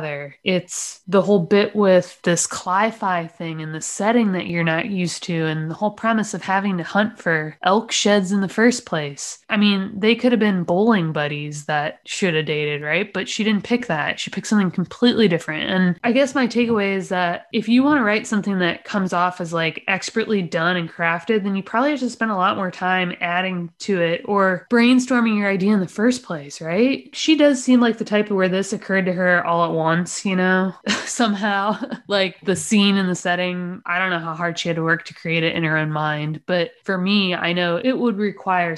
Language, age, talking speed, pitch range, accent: English, 20-39, 225 wpm, 170-210 Hz, American